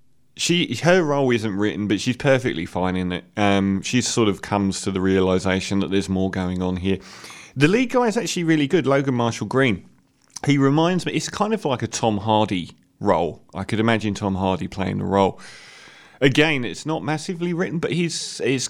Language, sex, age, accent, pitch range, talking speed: English, male, 30-49, British, 105-150 Hz, 200 wpm